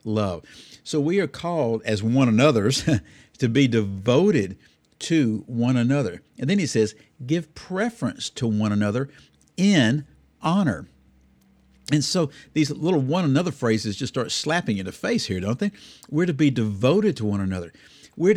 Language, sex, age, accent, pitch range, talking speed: English, male, 60-79, American, 105-150 Hz, 160 wpm